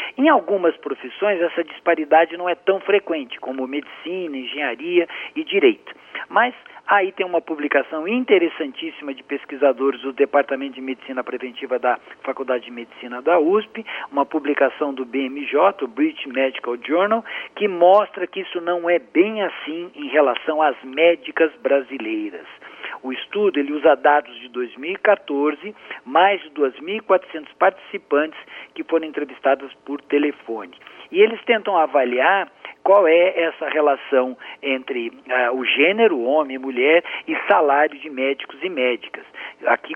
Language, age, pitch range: Portuguese, 50-69, 140-195 Hz